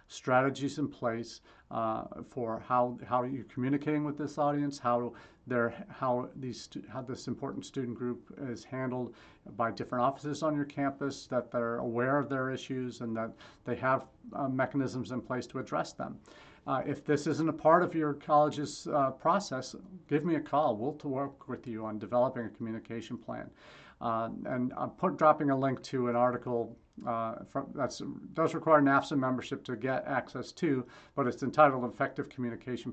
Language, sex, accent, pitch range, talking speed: English, male, American, 120-140 Hz, 180 wpm